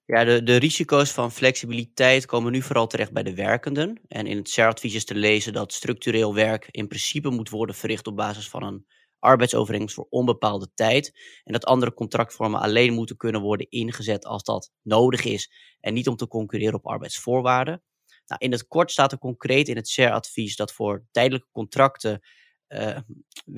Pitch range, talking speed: 110-130 Hz, 185 wpm